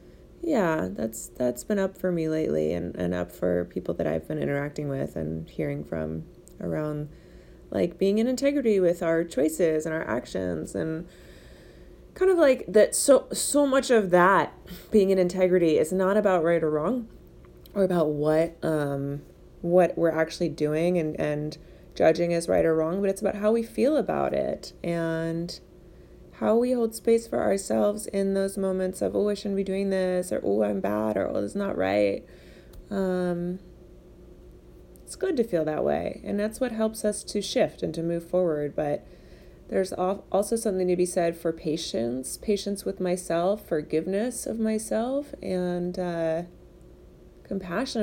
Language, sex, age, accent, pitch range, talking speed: English, female, 20-39, American, 150-195 Hz, 170 wpm